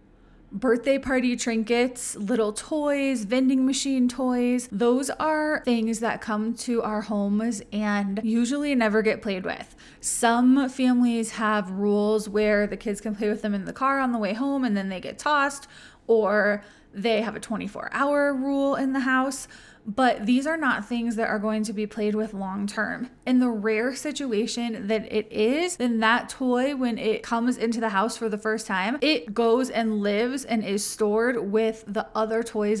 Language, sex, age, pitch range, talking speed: English, female, 20-39, 210-245 Hz, 180 wpm